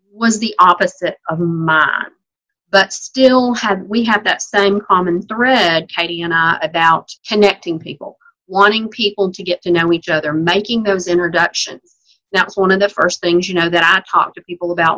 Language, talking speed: English, 180 wpm